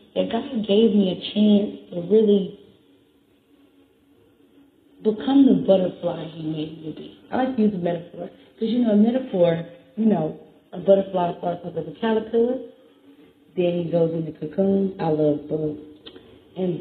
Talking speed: 160 wpm